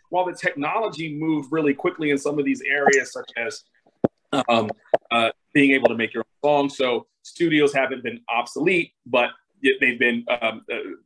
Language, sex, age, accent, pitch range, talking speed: English, male, 30-49, American, 130-150 Hz, 170 wpm